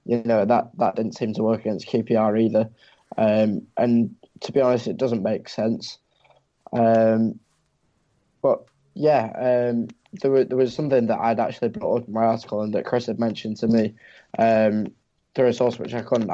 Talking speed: 185 wpm